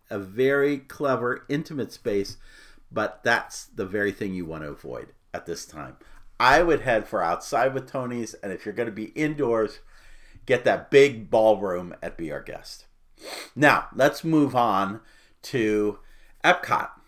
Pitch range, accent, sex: 110-150 Hz, American, male